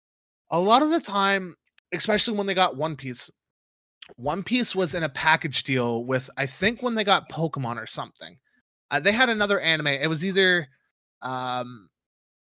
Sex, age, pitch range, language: male, 20-39, 145-195 Hz, English